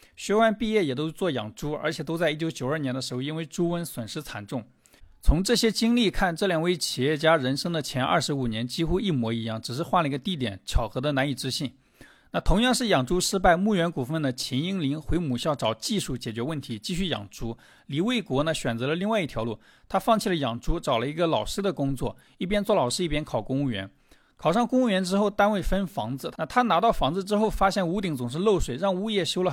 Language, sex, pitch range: Chinese, male, 135-195 Hz